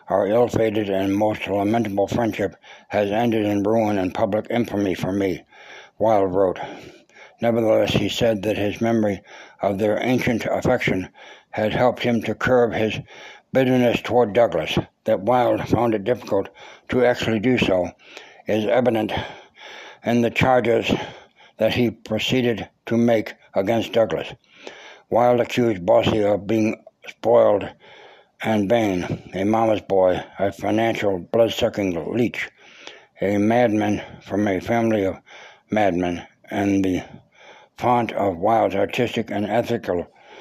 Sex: male